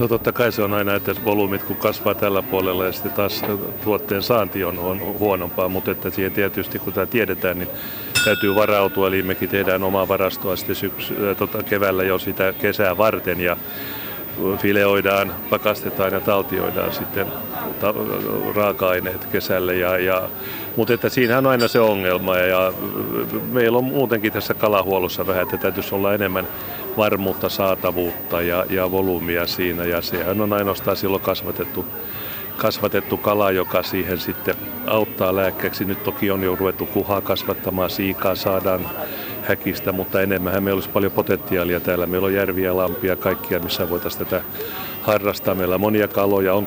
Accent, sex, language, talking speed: native, male, Finnish, 160 wpm